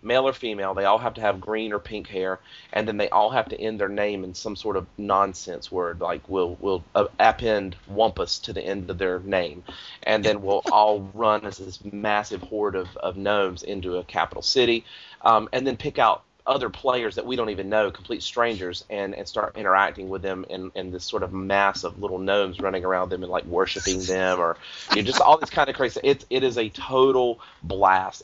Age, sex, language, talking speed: 30-49, male, English, 225 wpm